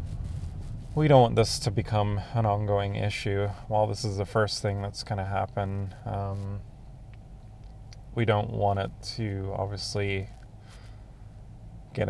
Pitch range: 100-115 Hz